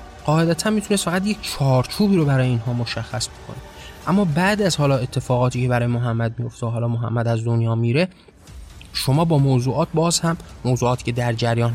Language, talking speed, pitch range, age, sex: Persian, 175 wpm, 120-150 Hz, 20-39, male